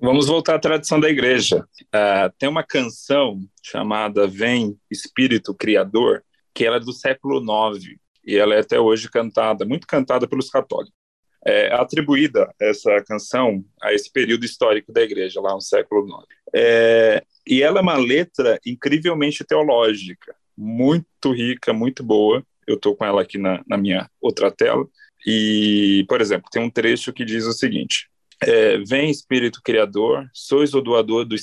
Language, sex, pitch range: Portuguese, male, 105-145 Hz